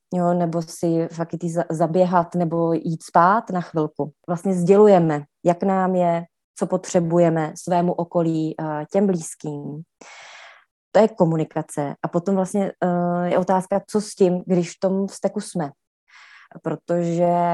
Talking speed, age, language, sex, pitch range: 130 wpm, 30-49, Czech, female, 165-190 Hz